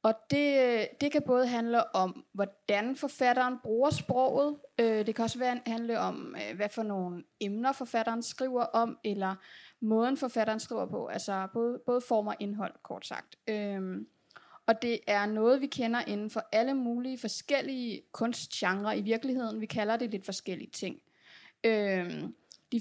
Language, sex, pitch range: Danish, female, 205-240 Hz